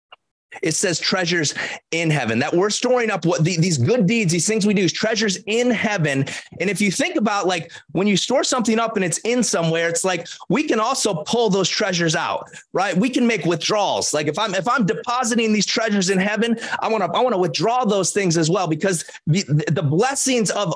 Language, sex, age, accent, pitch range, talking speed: English, male, 30-49, American, 170-225 Hz, 225 wpm